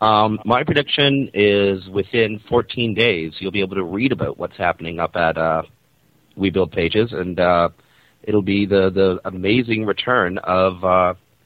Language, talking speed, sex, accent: English, 160 wpm, male, American